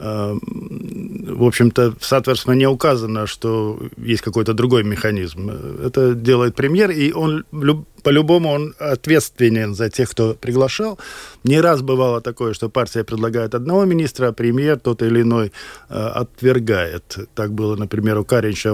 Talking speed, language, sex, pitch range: 135 wpm, Russian, male, 115-150 Hz